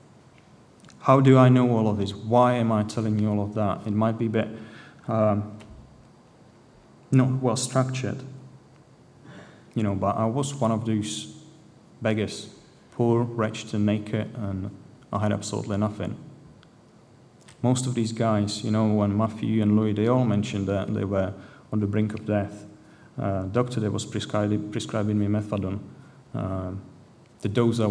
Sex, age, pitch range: male, 30-49, 105-130 Hz